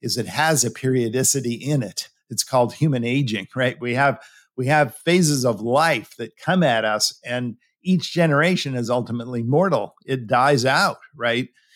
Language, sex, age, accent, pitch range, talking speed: English, male, 50-69, American, 120-155 Hz, 170 wpm